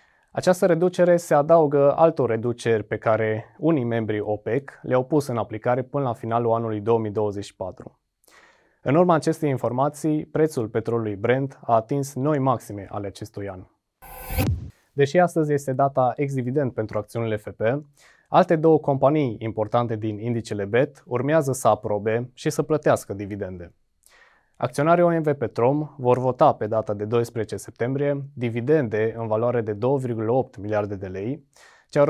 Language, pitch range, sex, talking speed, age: Romanian, 110-140 Hz, male, 140 wpm, 20-39